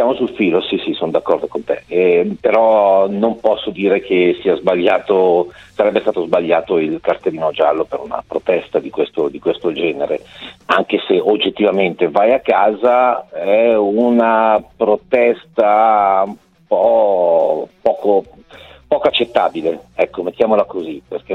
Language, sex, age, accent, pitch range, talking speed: Italian, male, 50-69, native, 110-145 Hz, 140 wpm